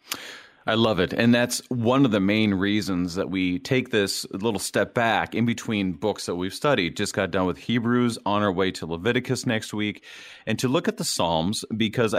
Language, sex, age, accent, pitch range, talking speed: English, male, 30-49, American, 100-130 Hz, 205 wpm